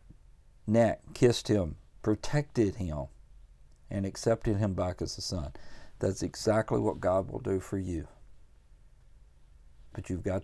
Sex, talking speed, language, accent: male, 130 wpm, English, American